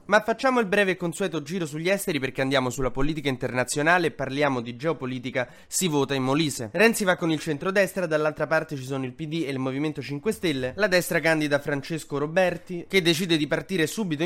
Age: 20-39